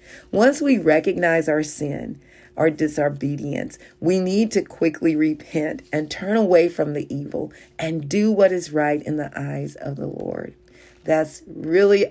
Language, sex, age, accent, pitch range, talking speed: English, female, 40-59, American, 150-180 Hz, 155 wpm